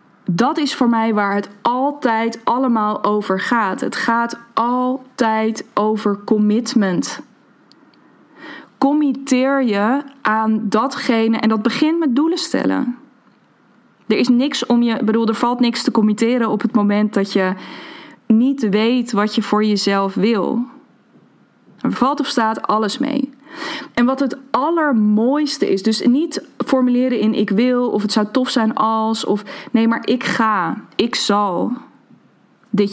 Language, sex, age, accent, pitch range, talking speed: Dutch, female, 20-39, Dutch, 210-265 Hz, 145 wpm